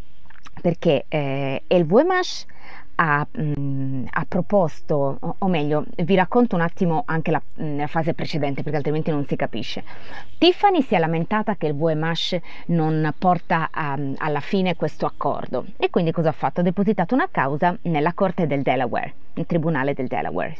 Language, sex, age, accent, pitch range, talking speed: Italian, female, 30-49, native, 150-255 Hz, 155 wpm